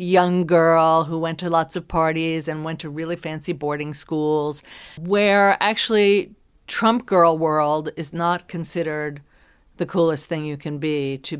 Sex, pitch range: female, 155-195 Hz